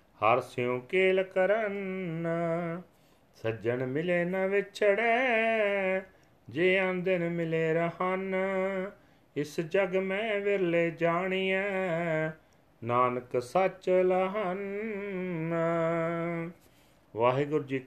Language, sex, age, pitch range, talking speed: Punjabi, male, 40-59, 125-165 Hz, 75 wpm